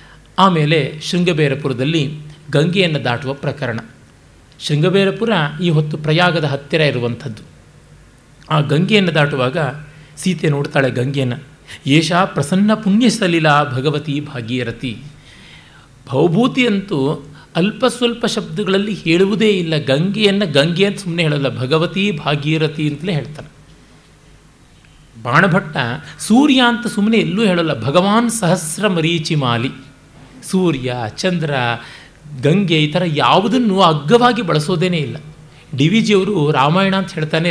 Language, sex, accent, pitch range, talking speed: Kannada, male, native, 140-185 Hz, 100 wpm